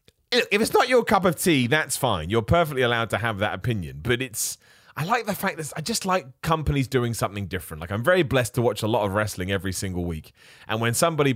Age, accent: 30-49, British